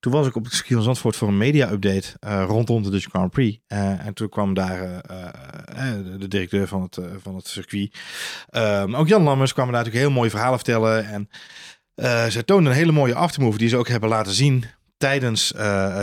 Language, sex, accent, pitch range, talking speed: Dutch, male, Dutch, 100-130 Hz, 215 wpm